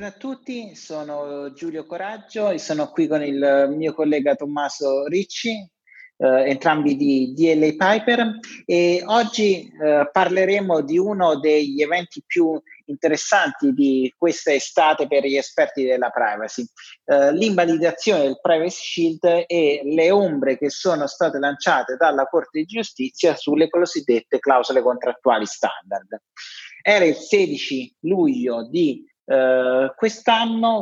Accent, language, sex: native, Italian, male